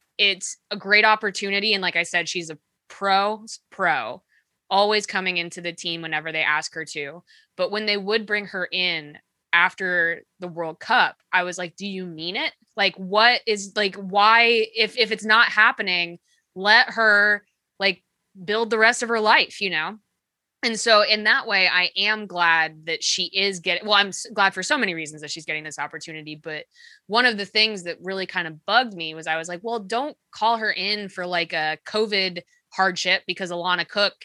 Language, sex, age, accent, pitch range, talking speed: English, female, 20-39, American, 165-210 Hz, 200 wpm